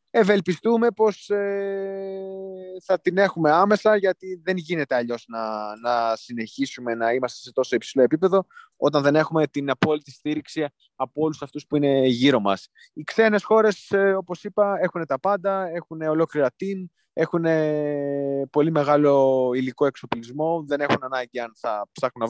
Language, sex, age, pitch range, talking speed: Greek, male, 20-39, 130-175 Hz, 150 wpm